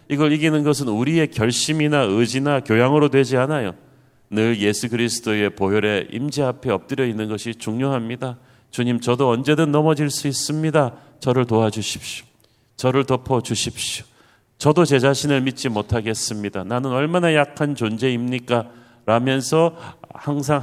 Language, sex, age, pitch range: Korean, male, 40-59, 115-145 Hz